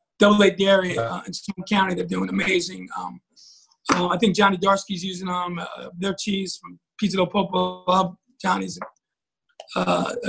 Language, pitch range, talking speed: English, 185-225 Hz, 170 wpm